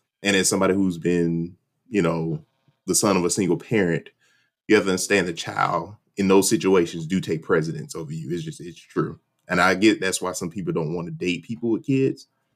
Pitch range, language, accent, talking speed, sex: 90-110 Hz, English, American, 215 wpm, male